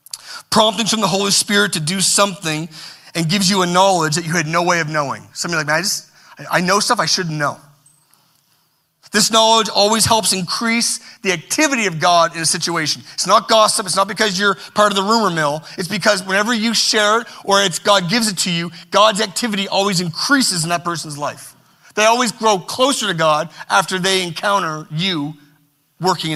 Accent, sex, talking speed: American, male, 205 wpm